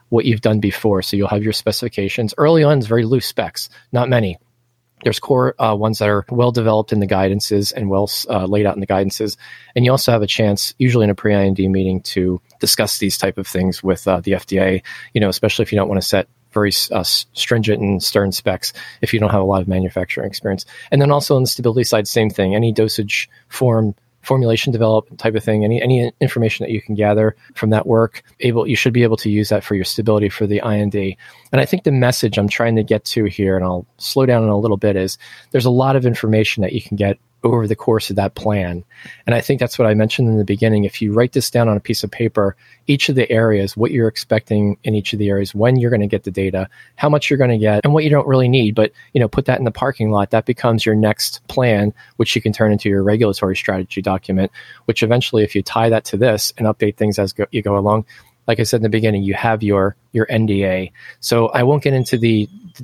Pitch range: 100-120 Hz